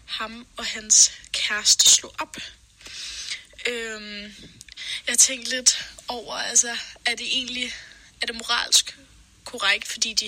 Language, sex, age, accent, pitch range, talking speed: Danish, female, 10-29, native, 220-260 Hz, 115 wpm